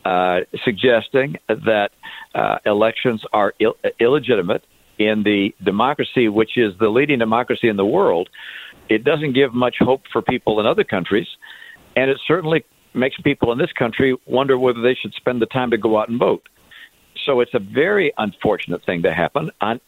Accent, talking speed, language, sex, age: American, 175 wpm, English, male, 60-79